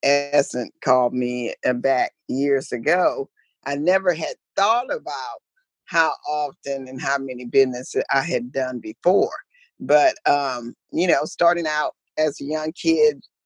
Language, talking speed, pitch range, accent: English, 140 wpm, 140-185 Hz, American